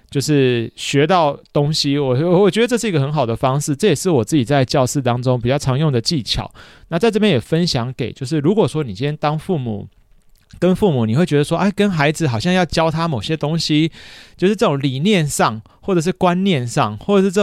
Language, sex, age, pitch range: Chinese, male, 30-49, 130-175 Hz